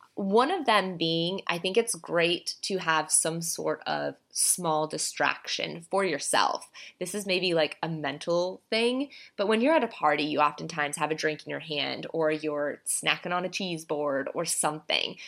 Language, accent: English, American